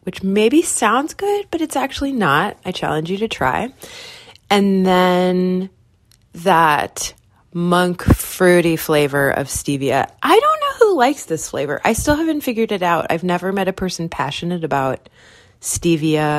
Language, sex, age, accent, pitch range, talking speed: English, female, 30-49, American, 145-200 Hz, 155 wpm